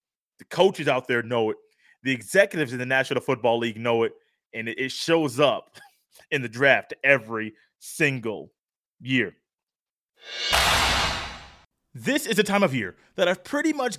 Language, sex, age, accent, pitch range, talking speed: English, male, 30-49, American, 150-215 Hz, 150 wpm